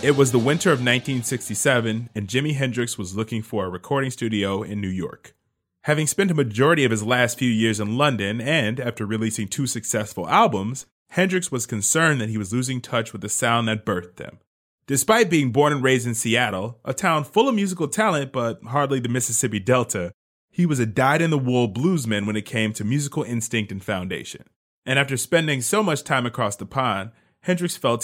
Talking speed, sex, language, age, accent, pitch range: 200 wpm, male, English, 30-49, American, 110-145 Hz